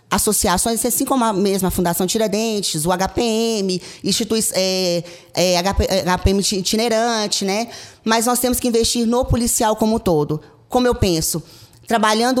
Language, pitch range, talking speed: Portuguese, 190-230 Hz, 140 wpm